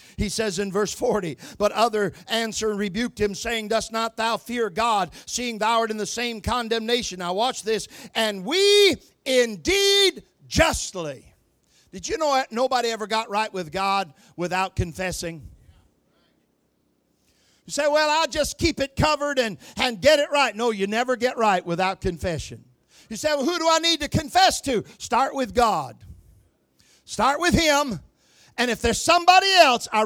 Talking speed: 165 wpm